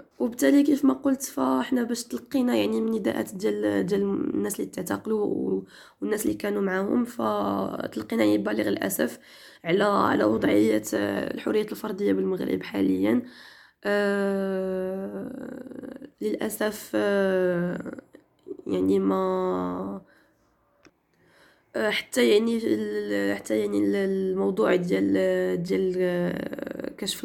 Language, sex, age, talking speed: Arabic, female, 20-39, 90 wpm